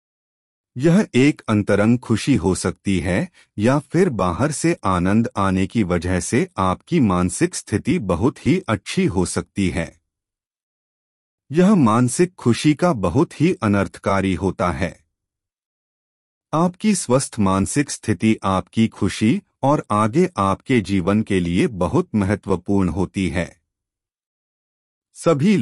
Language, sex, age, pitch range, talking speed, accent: Hindi, male, 40-59, 90-135 Hz, 120 wpm, native